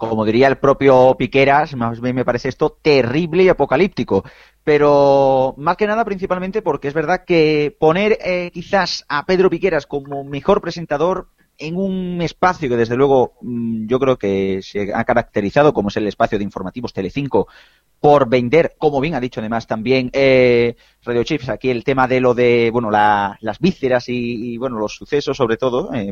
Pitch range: 115-145 Hz